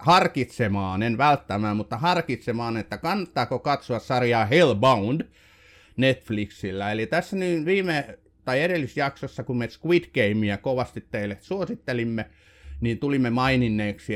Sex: male